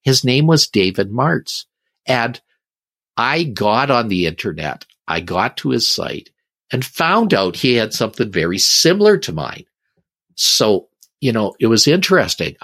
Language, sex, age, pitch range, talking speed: English, male, 50-69, 95-155 Hz, 150 wpm